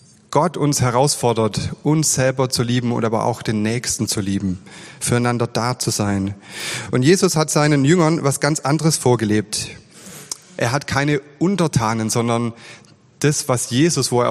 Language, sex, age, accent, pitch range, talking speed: German, male, 30-49, German, 115-145 Hz, 155 wpm